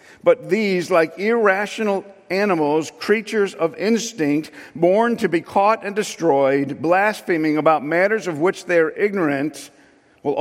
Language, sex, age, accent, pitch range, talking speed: English, male, 50-69, American, 155-190 Hz, 135 wpm